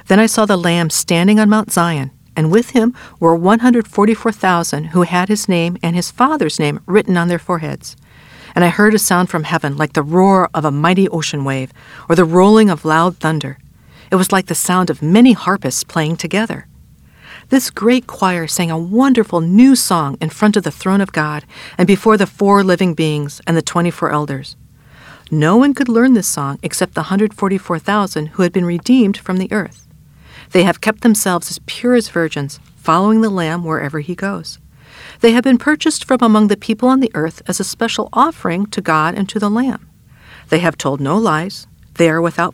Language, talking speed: English, 200 wpm